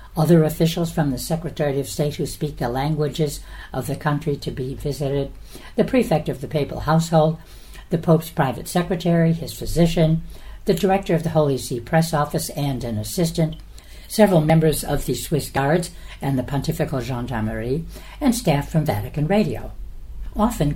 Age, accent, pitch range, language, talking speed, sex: 60-79, American, 135-170 Hz, English, 160 wpm, female